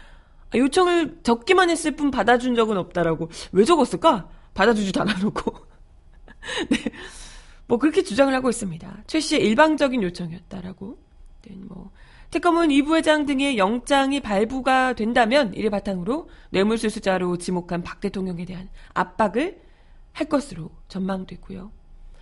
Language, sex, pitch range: Korean, female, 185-260 Hz